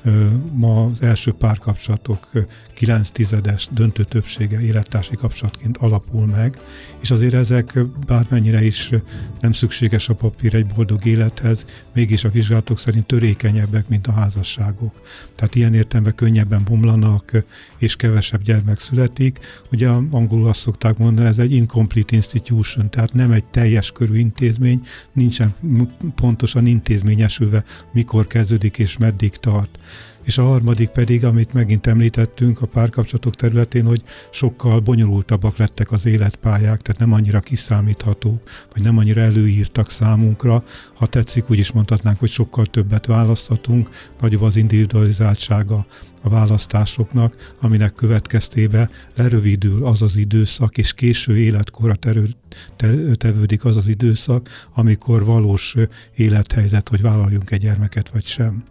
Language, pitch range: Hungarian, 105-115 Hz